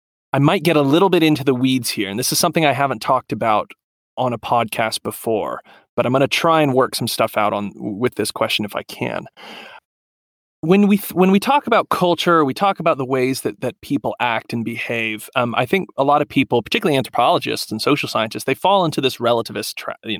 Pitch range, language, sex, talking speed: 115-160 Hz, English, male, 230 wpm